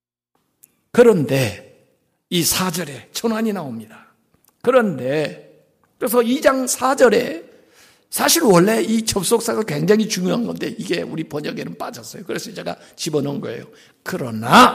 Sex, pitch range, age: male, 195-310 Hz, 60-79